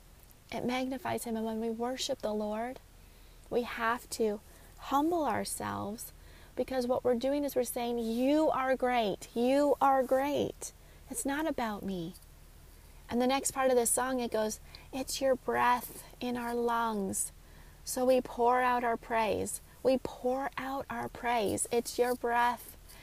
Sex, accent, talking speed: female, American, 155 wpm